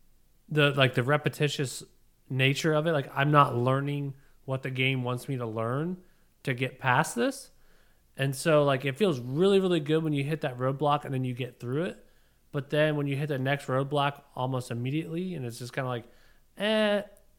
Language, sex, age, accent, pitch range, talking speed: English, male, 30-49, American, 120-150 Hz, 200 wpm